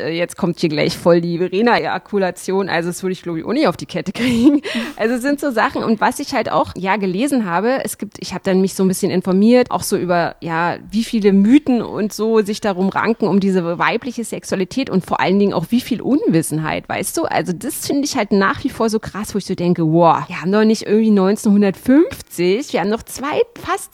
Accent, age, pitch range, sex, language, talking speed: German, 30-49, 185-235 Hz, female, German, 235 wpm